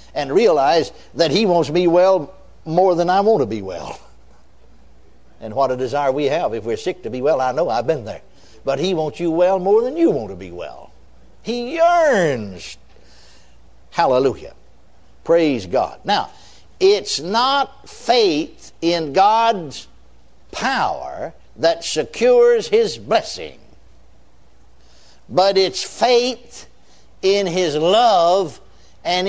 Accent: American